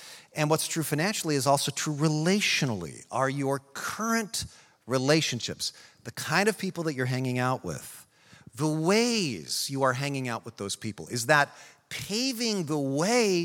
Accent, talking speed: American, 155 wpm